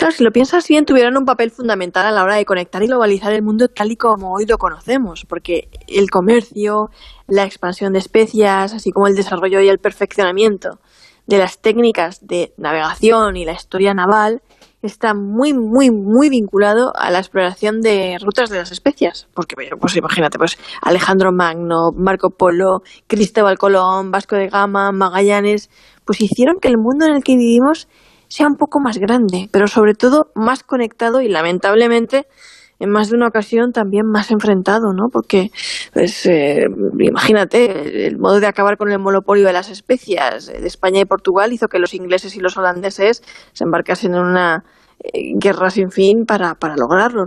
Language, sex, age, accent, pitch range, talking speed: Spanish, female, 20-39, Spanish, 190-235 Hz, 180 wpm